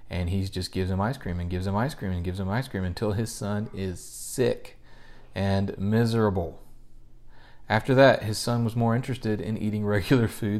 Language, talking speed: English, 200 wpm